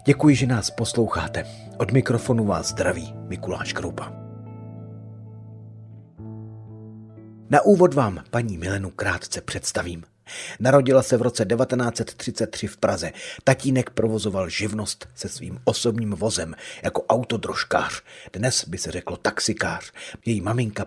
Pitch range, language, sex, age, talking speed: 105-130 Hz, Czech, male, 40-59, 115 wpm